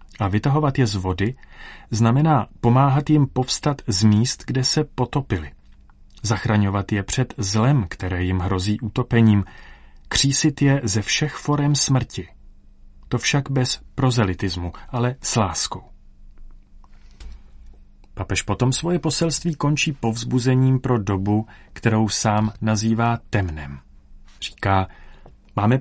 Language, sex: Czech, male